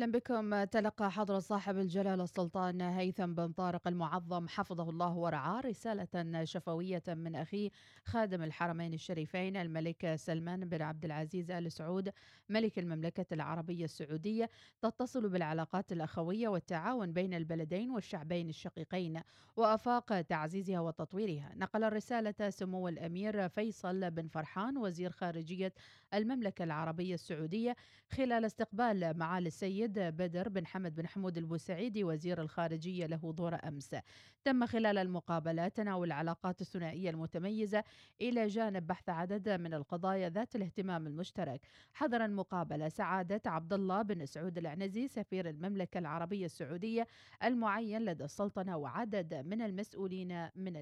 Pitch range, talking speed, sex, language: 165-205 Hz, 125 wpm, female, Arabic